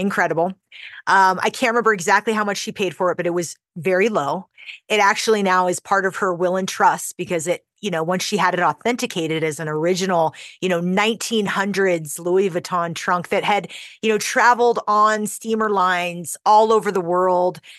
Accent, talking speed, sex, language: American, 190 wpm, female, English